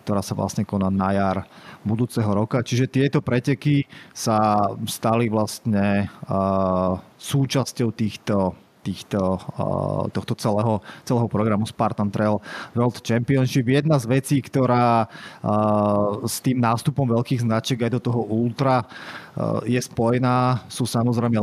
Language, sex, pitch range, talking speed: Slovak, male, 105-130 Hz, 130 wpm